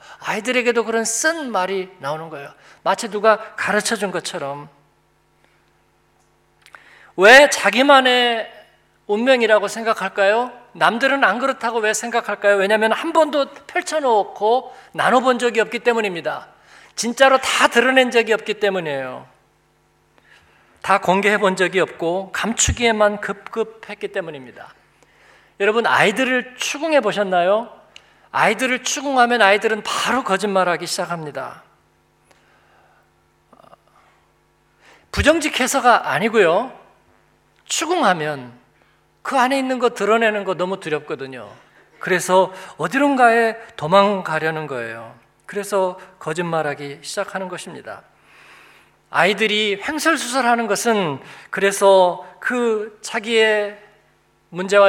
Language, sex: Korean, male